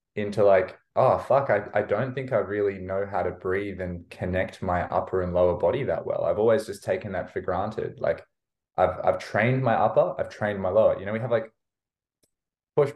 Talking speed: 215 wpm